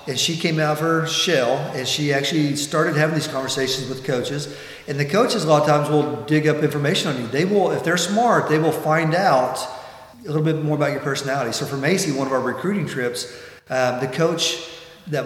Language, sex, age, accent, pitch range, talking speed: English, male, 40-59, American, 135-165 Hz, 225 wpm